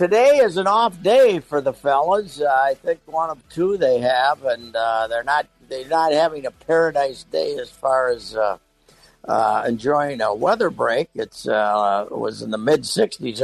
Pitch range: 125-180 Hz